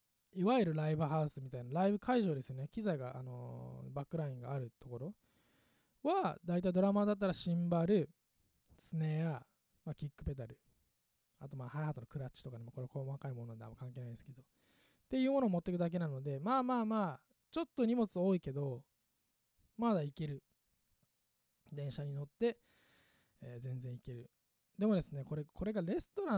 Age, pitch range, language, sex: 20-39, 130-180 Hz, Japanese, male